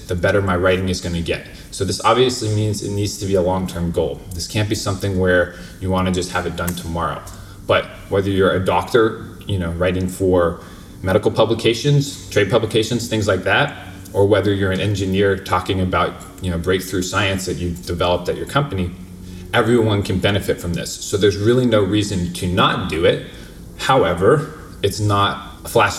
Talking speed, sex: 190 wpm, male